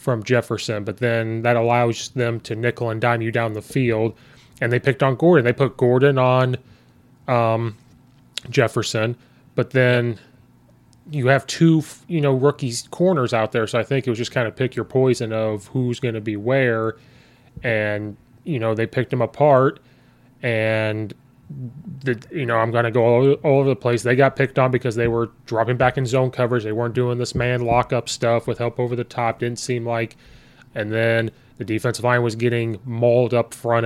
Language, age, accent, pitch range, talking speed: English, 20-39, American, 115-130 Hz, 195 wpm